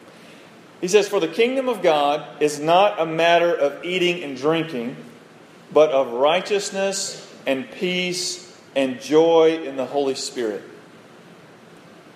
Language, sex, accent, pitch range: English, male, American, 155-210 Hz